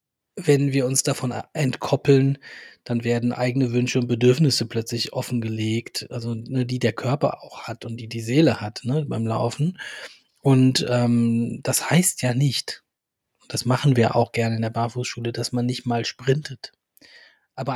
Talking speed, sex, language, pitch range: 160 wpm, male, German, 120-135 Hz